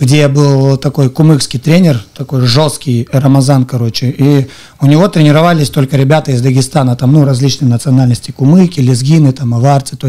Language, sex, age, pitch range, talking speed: Russian, male, 30-49, 130-155 Hz, 155 wpm